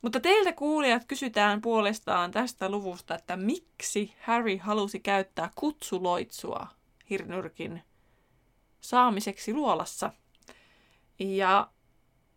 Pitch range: 185-230 Hz